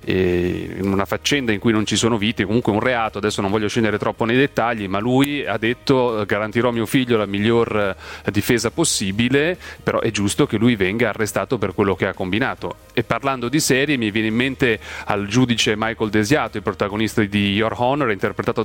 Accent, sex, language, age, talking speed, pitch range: native, male, Italian, 30-49, 195 wpm, 105-125 Hz